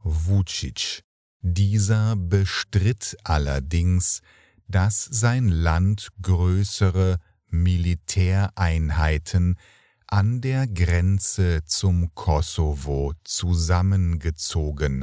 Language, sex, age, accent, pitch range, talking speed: English, male, 50-69, German, 85-100 Hz, 55 wpm